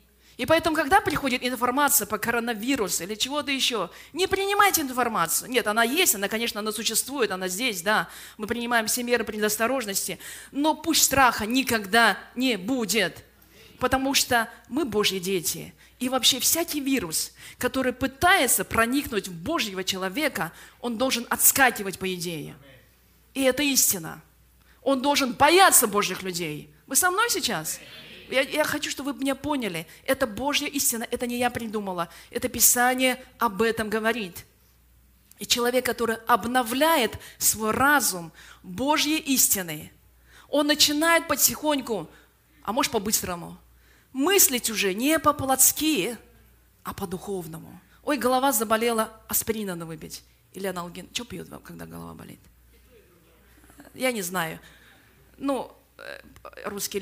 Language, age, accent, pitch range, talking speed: Russian, 20-39, native, 200-275 Hz, 130 wpm